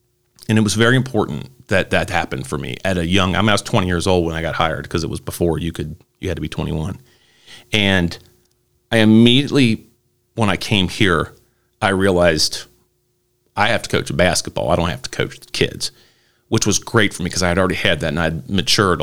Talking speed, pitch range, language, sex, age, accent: 225 wpm, 85-110 Hz, English, male, 40-59, American